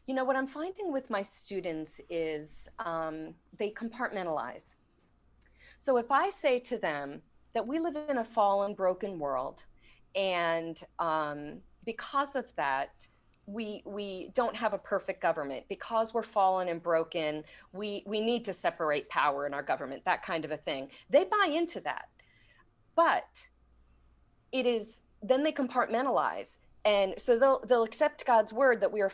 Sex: female